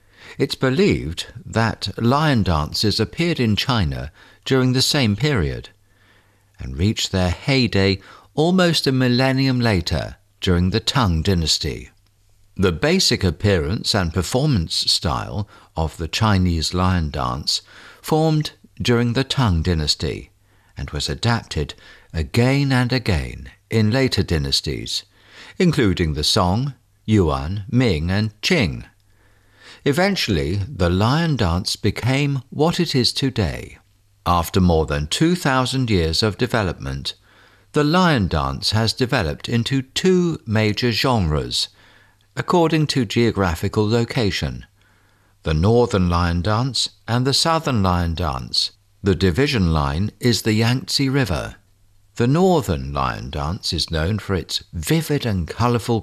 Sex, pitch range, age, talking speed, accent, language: male, 90-125 Hz, 60-79, 120 wpm, British, English